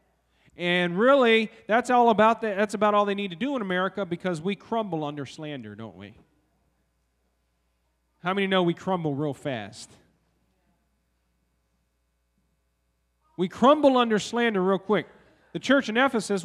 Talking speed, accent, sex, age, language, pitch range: 140 wpm, American, male, 40-59, English, 150-215 Hz